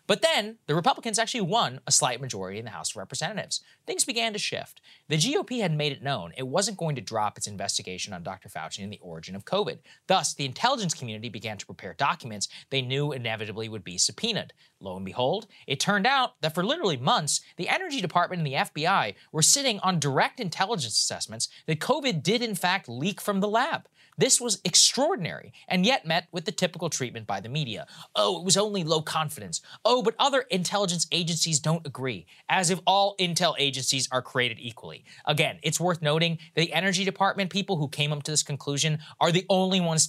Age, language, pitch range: 30-49, English, 125-190 Hz